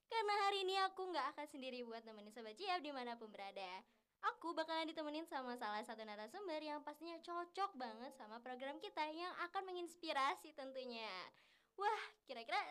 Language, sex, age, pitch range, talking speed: Indonesian, male, 10-29, 240-345 Hz, 155 wpm